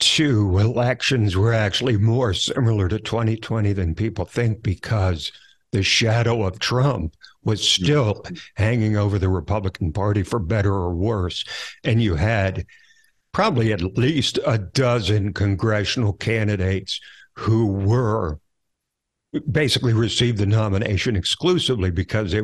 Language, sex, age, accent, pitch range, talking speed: English, male, 60-79, American, 100-120 Hz, 125 wpm